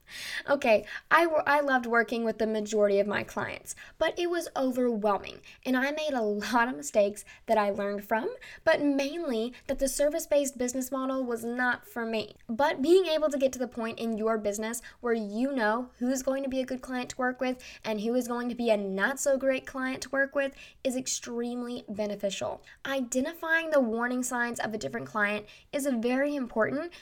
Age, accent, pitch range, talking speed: 10-29, American, 225-280 Hz, 195 wpm